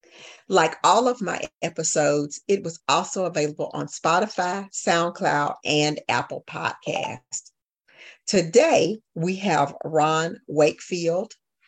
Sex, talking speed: female, 105 wpm